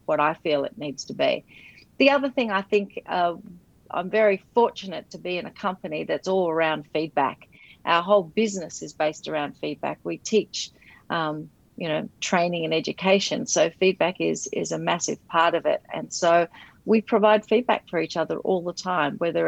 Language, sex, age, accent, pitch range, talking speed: English, female, 40-59, Australian, 165-205 Hz, 190 wpm